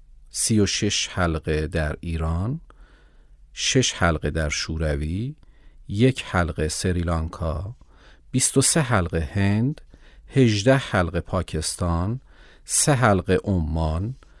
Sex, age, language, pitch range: male, 50-69, English, 85-125 Hz